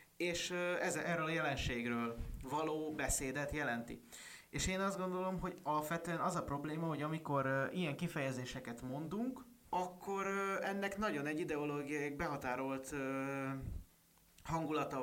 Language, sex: Hungarian, male